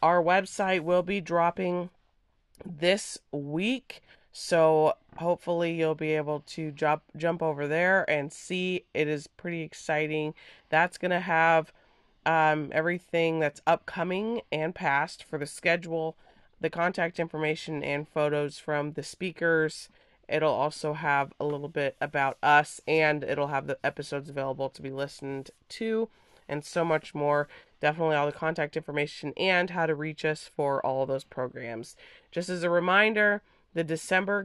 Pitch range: 150-180 Hz